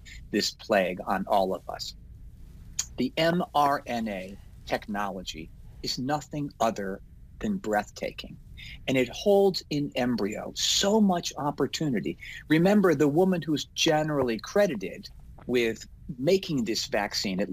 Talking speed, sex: 115 wpm, male